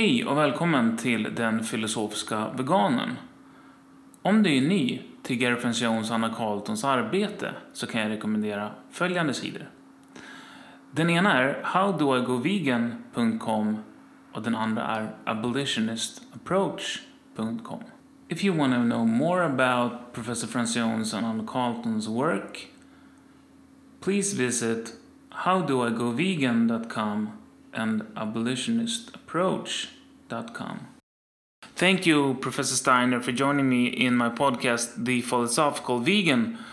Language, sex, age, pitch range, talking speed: Swedish, male, 30-49, 115-175 Hz, 100 wpm